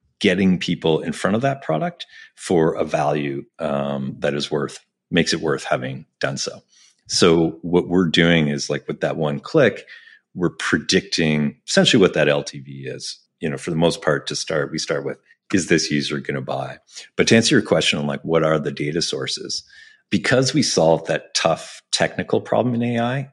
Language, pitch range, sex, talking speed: English, 75-90 Hz, male, 195 wpm